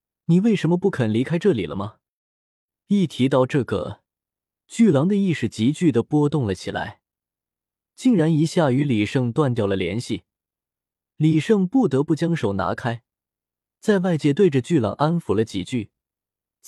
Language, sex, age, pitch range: Chinese, male, 20-39, 115-165 Hz